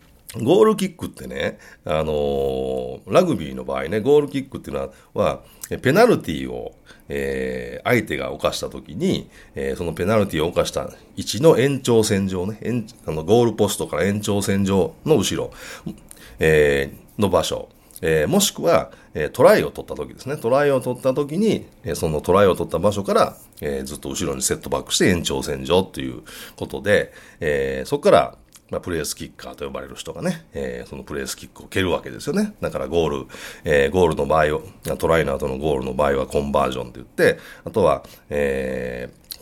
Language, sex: Japanese, male